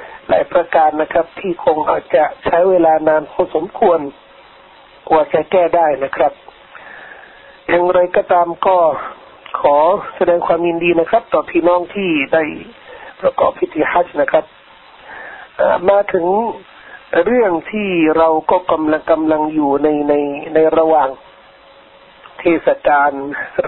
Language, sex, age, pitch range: Thai, male, 60-79, 155-185 Hz